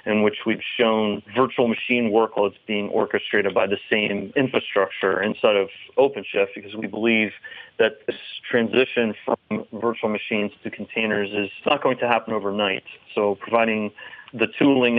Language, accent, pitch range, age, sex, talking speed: English, American, 100-115 Hz, 30-49, male, 150 wpm